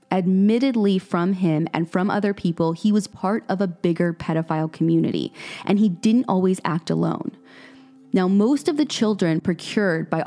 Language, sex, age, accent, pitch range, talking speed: English, female, 20-39, American, 175-215 Hz, 165 wpm